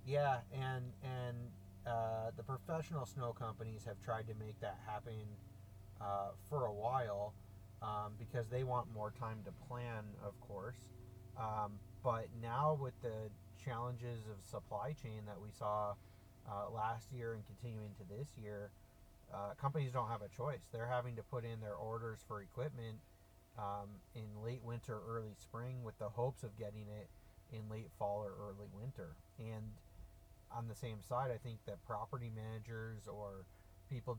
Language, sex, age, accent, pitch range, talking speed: English, male, 30-49, American, 105-120 Hz, 165 wpm